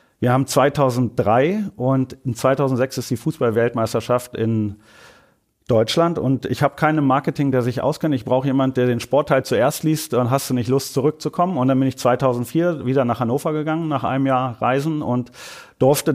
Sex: male